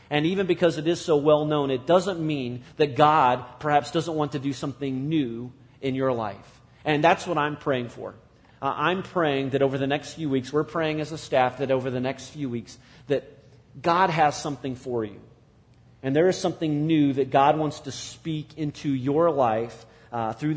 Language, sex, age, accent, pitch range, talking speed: English, male, 40-59, American, 125-155 Hz, 200 wpm